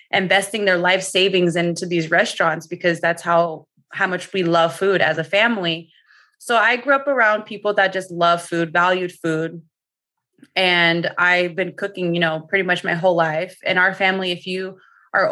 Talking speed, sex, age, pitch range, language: 185 wpm, female, 20-39, 170-195 Hz, English